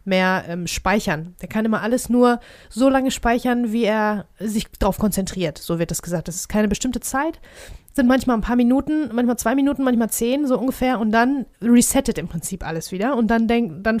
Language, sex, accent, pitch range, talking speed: German, female, German, 210-255 Hz, 205 wpm